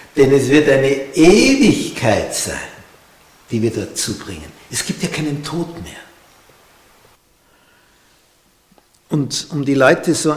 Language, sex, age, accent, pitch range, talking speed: German, male, 60-79, Austrian, 115-145 Hz, 120 wpm